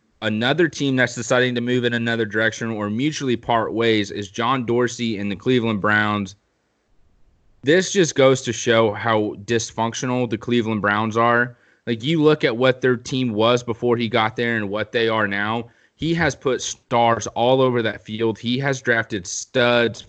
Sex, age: male, 20-39